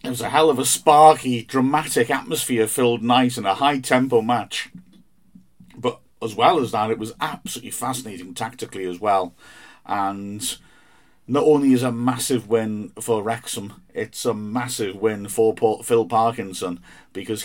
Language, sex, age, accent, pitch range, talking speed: English, male, 50-69, British, 105-125 Hz, 155 wpm